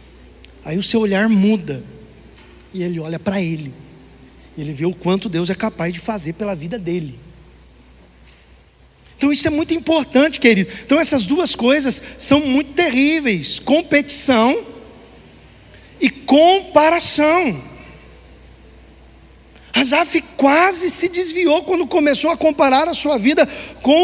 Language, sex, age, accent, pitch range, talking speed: Portuguese, male, 40-59, Brazilian, 195-310 Hz, 125 wpm